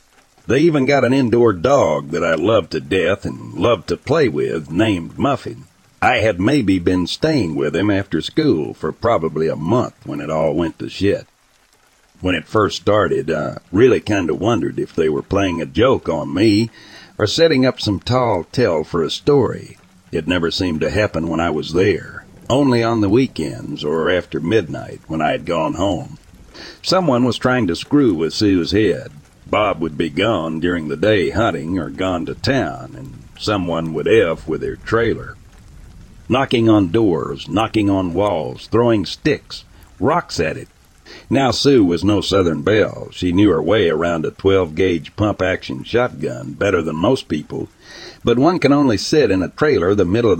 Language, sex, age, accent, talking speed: English, male, 60-79, American, 180 wpm